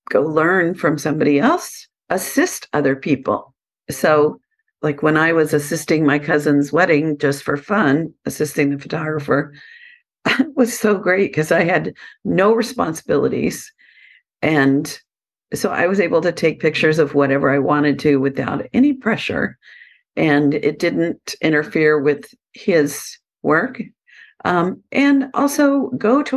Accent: American